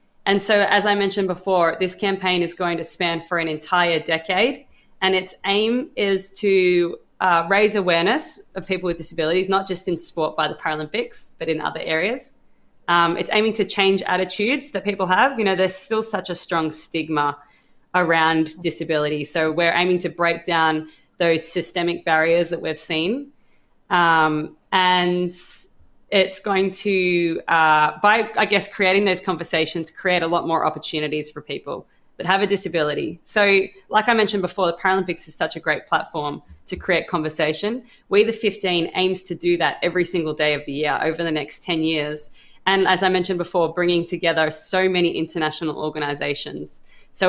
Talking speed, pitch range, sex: 175 wpm, 160-195 Hz, female